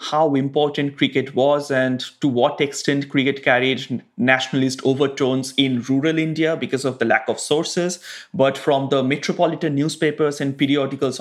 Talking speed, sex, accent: 150 wpm, male, Indian